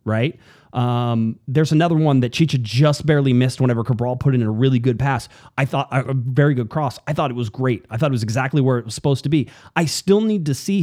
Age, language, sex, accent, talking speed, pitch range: 30-49, English, male, American, 250 wpm, 120-160 Hz